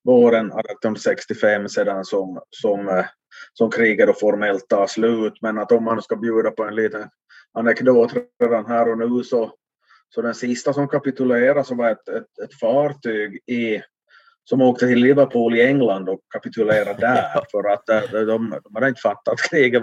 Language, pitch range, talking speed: Swedish, 110-130 Hz, 165 wpm